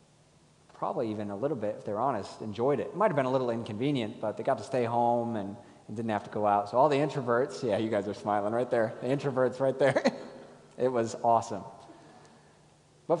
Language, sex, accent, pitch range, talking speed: English, male, American, 110-160 Hz, 225 wpm